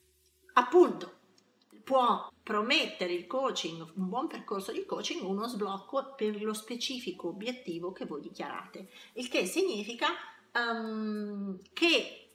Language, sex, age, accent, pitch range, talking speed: Italian, female, 30-49, native, 180-220 Hz, 110 wpm